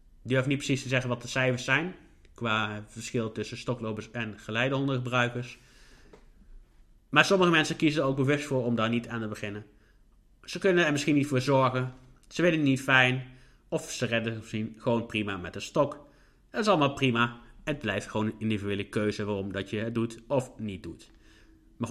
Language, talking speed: Dutch, 190 wpm